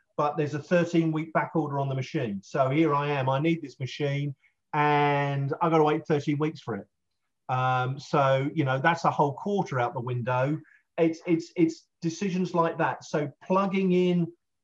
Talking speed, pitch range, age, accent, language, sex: 195 wpm, 140-160 Hz, 40-59, British, English, male